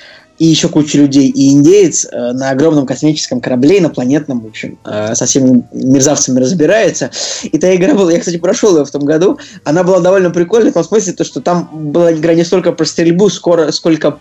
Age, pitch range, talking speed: 20-39, 140-165 Hz, 190 wpm